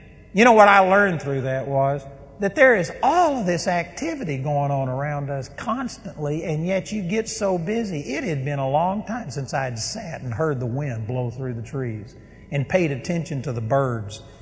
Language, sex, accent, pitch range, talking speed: English, male, American, 125-185 Hz, 210 wpm